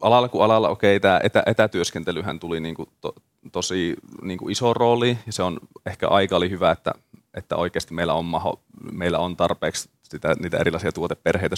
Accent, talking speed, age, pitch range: native, 170 wpm, 30-49, 90-110 Hz